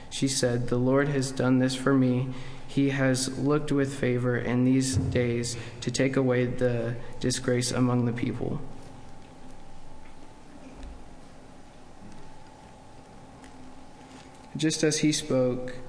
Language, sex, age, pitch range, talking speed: English, male, 20-39, 125-135 Hz, 110 wpm